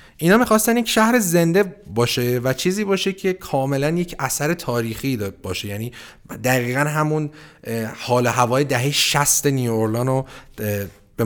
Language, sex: Persian, male